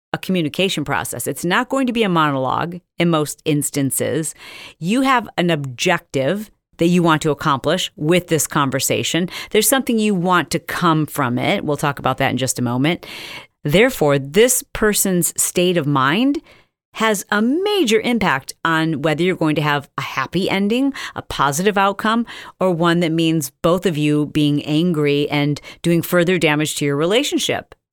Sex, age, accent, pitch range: female, 40-59, American, 145-190 Hz